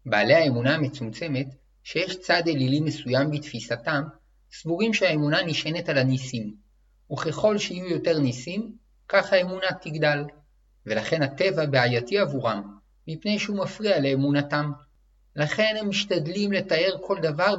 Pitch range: 135-180 Hz